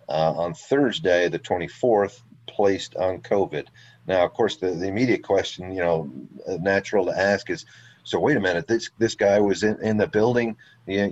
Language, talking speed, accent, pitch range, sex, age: English, 185 wpm, American, 95-120 Hz, male, 40-59